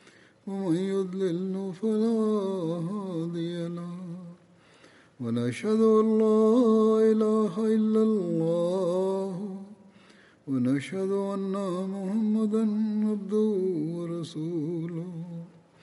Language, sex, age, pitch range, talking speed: Swahili, male, 50-69, 170-215 Hz, 55 wpm